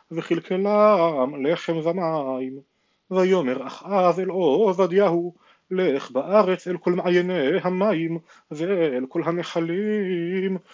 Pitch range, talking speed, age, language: 160-190 Hz, 95 wpm, 40-59, Hebrew